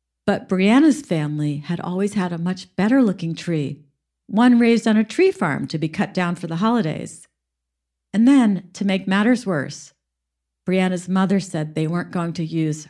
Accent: American